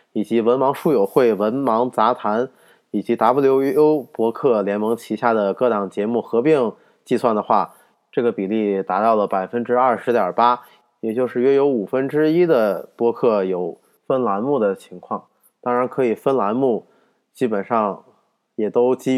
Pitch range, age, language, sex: 105-130 Hz, 20-39, Chinese, male